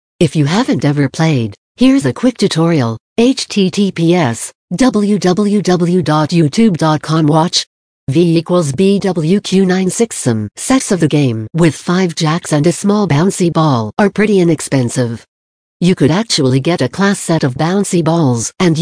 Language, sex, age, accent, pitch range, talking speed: English, female, 60-79, American, 140-190 Hz, 135 wpm